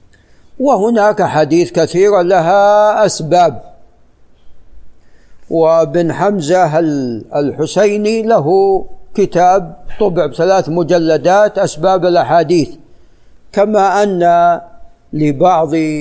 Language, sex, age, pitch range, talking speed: Arabic, male, 50-69, 155-195 Hz, 65 wpm